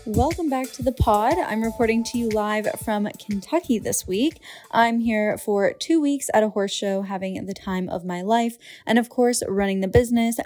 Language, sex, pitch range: English, female, 190-230 Hz